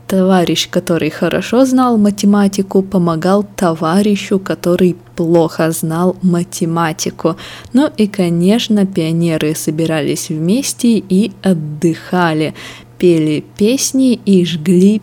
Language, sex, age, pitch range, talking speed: Russian, female, 20-39, 165-195 Hz, 90 wpm